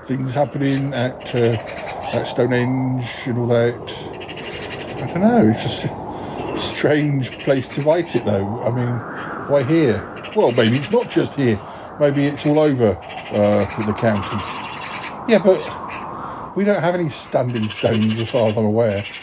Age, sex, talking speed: 50-69, male, 160 wpm